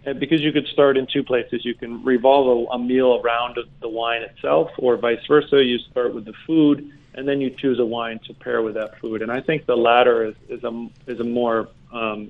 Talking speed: 240 wpm